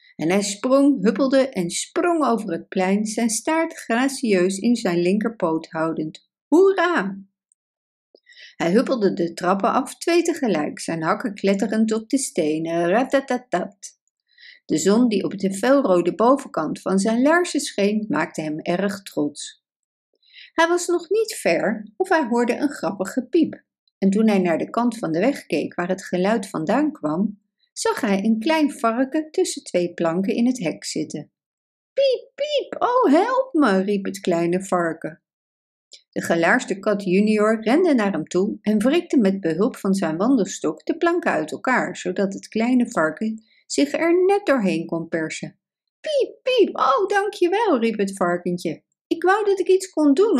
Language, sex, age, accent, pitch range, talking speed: Dutch, female, 60-79, Dutch, 190-305 Hz, 160 wpm